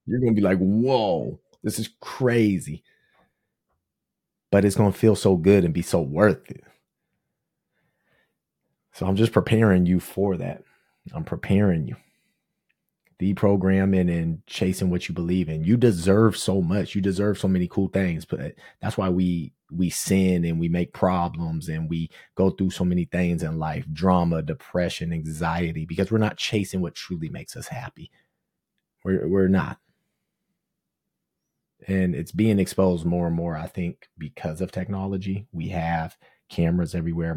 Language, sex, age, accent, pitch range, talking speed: English, male, 30-49, American, 85-100 Hz, 155 wpm